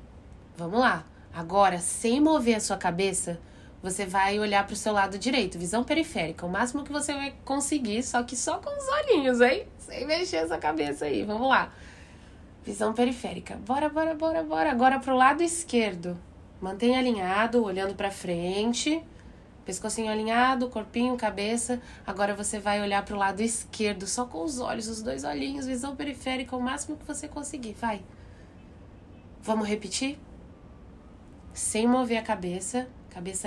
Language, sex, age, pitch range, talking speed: Portuguese, female, 20-39, 185-255 Hz, 160 wpm